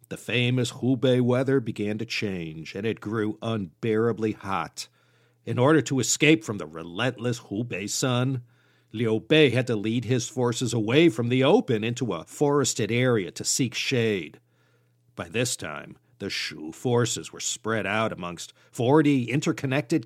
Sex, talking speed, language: male, 155 wpm, English